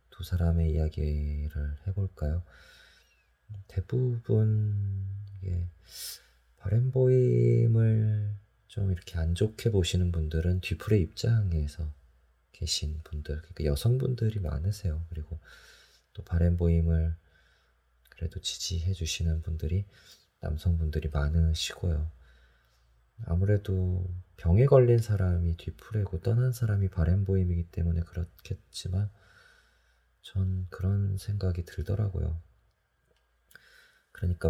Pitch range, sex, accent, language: 80-100 Hz, male, native, Korean